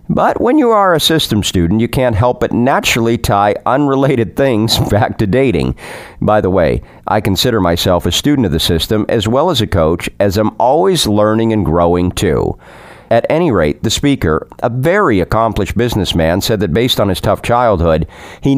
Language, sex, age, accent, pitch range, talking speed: English, male, 50-69, American, 90-120 Hz, 185 wpm